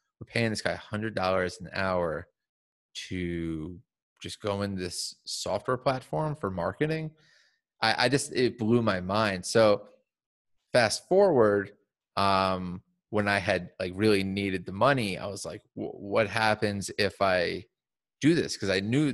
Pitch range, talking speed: 100-130 Hz, 155 wpm